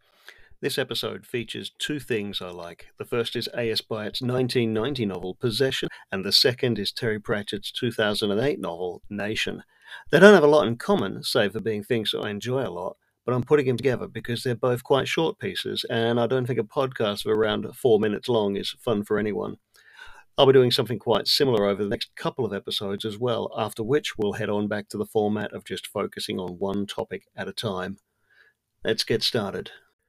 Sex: male